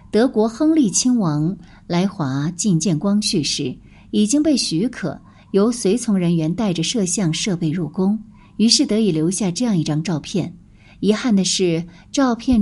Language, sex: Chinese, female